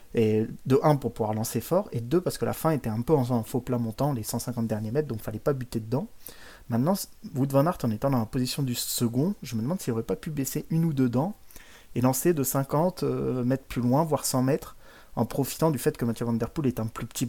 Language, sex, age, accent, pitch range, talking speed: French, male, 30-49, French, 115-135 Hz, 280 wpm